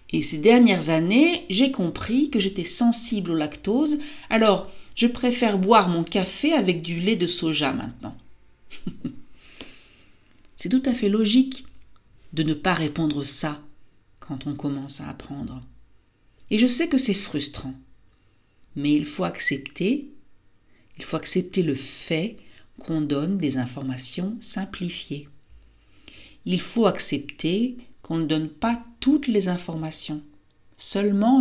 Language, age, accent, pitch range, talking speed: French, 50-69, French, 150-215 Hz, 130 wpm